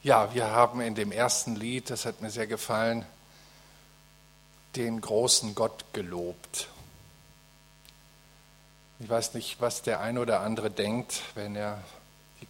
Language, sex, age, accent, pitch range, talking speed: German, male, 50-69, German, 105-115 Hz, 135 wpm